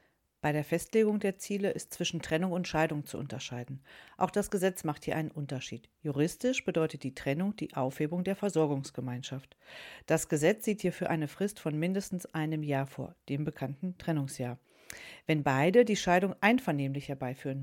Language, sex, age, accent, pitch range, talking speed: German, female, 40-59, German, 145-180 Hz, 160 wpm